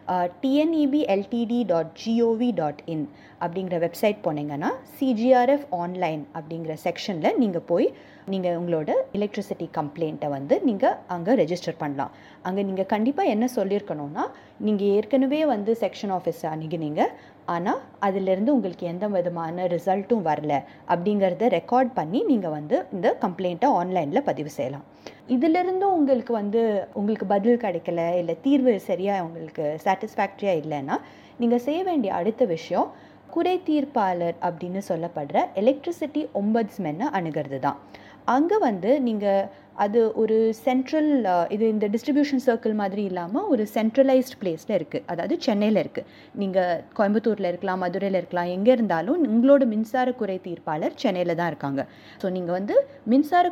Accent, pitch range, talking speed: native, 175-250 Hz, 125 wpm